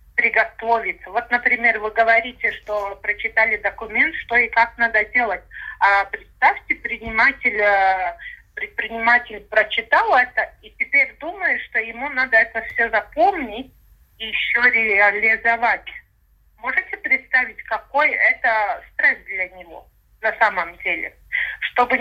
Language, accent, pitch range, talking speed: Russian, native, 220-260 Hz, 110 wpm